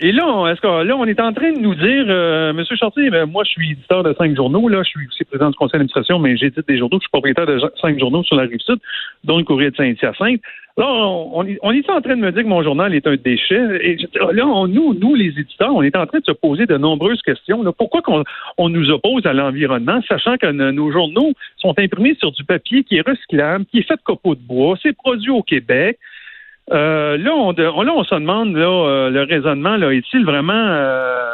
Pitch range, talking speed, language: 145-230 Hz, 245 wpm, French